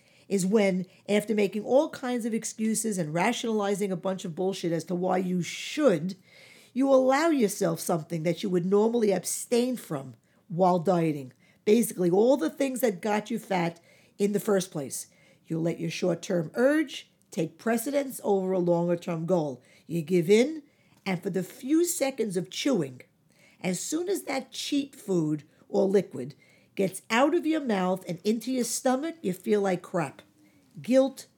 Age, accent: 50-69, American